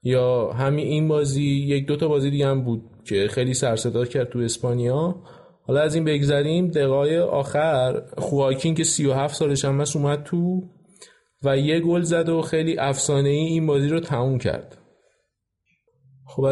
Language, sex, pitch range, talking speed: Persian, male, 135-165 Hz, 170 wpm